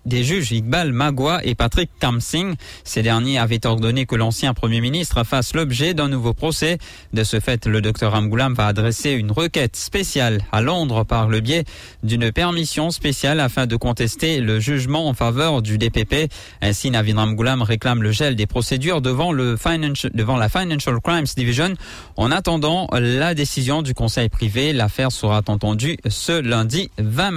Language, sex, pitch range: English, male, 115-150 Hz